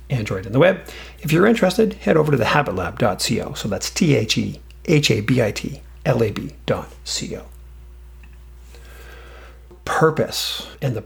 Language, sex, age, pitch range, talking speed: English, male, 40-59, 95-135 Hz, 90 wpm